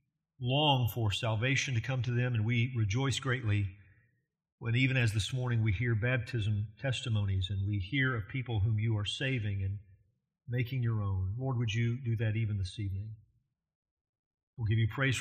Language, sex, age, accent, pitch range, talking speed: English, male, 50-69, American, 110-140 Hz, 180 wpm